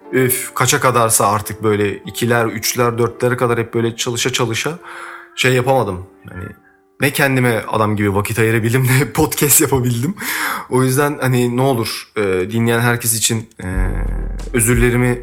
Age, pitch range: 30-49, 115-140 Hz